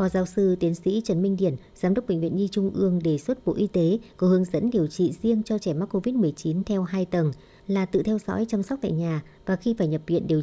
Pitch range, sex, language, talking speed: 170-210 Hz, male, Vietnamese, 270 wpm